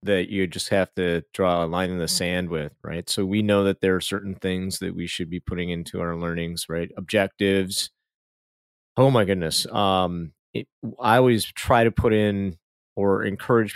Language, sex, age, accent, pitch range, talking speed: English, male, 30-49, American, 95-125 Hz, 190 wpm